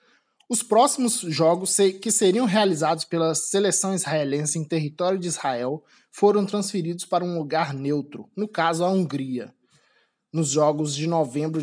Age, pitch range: 20-39, 150-190 Hz